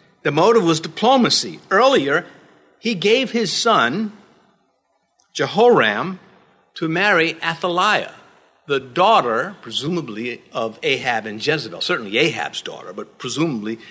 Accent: American